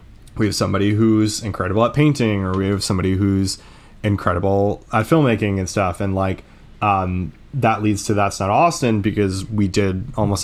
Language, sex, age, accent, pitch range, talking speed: English, male, 20-39, American, 95-110 Hz, 170 wpm